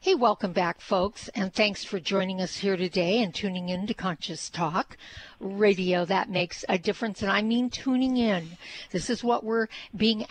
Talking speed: 185 wpm